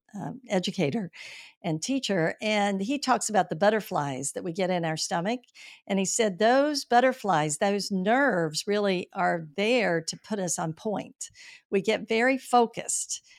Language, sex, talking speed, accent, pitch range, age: English, female, 155 wpm, American, 175-225 Hz, 50-69